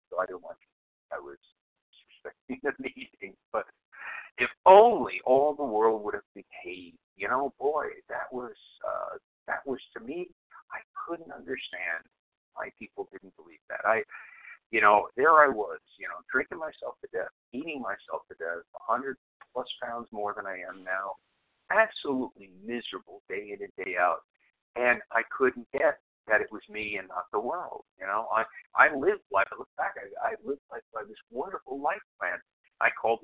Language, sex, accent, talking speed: English, male, American, 180 wpm